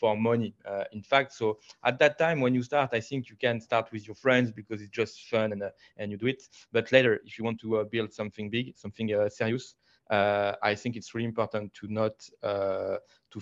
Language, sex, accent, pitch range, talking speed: English, male, French, 105-120 Hz, 235 wpm